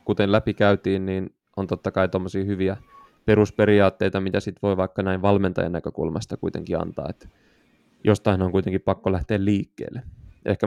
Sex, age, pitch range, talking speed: male, 20-39, 95-105 Hz, 140 wpm